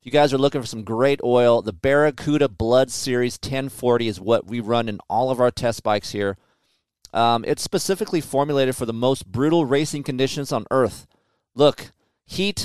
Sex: male